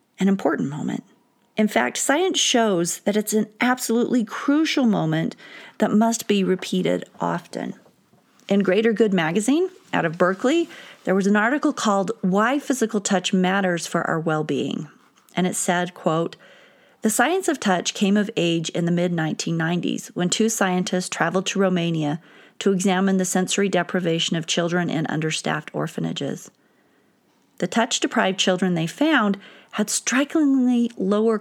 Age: 40-59